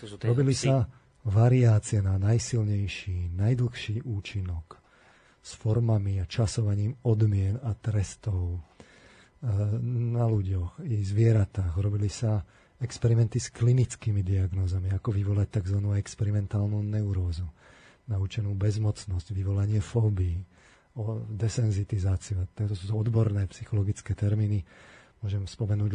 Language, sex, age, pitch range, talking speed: Slovak, male, 40-59, 100-115 Hz, 100 wpm